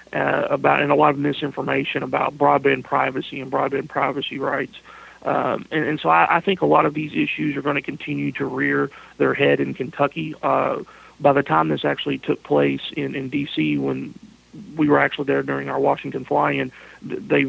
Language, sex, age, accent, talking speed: English, male, 40-59, American, 200 wpm